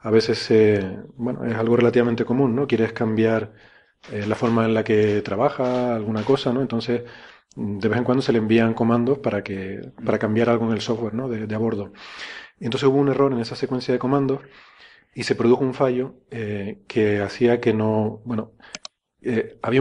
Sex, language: male, Spanish